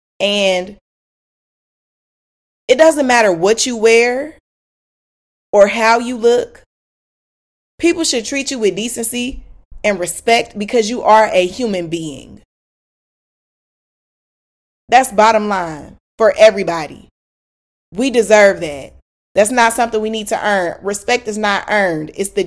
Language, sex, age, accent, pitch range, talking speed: English, female, 20-39, American, 175-235 Hz, 125 wpm